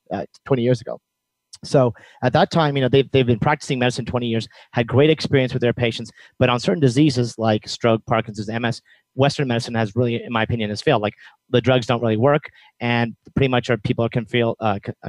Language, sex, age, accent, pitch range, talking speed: English, male, 40-59, American, 115-135 Hz, 215 wpm